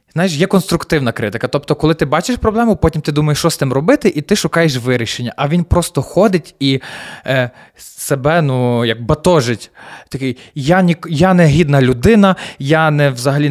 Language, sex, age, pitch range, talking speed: Ukrainian, male, 20-39, 130-165 Hz, 180 wpm